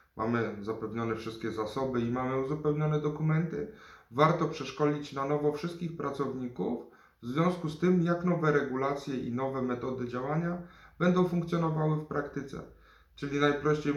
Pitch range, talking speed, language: 115-145 Hz, 135 wpm, Polish